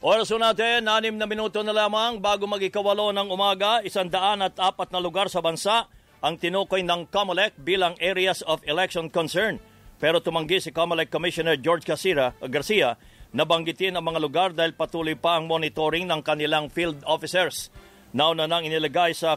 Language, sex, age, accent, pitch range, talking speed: English, male, 50-69, Filipino, 155-180 Hz, 160 wpm